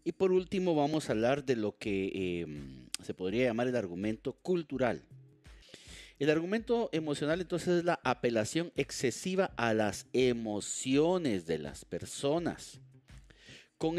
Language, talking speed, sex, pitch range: Italian, 135 wpm, male, 110-170 Hz